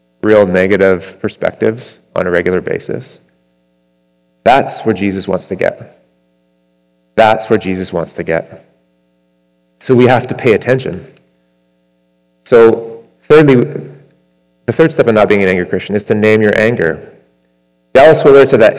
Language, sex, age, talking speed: English, male, 30-49, 145 wpm